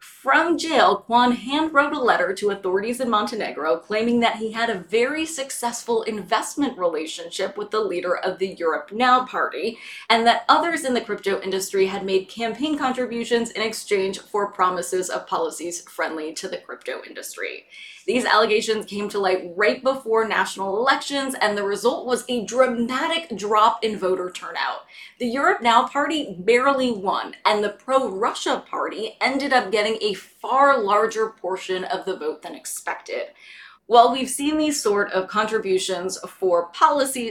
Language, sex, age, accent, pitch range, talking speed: English, female, 20-39, American, 190-270 Hz, 160 wpm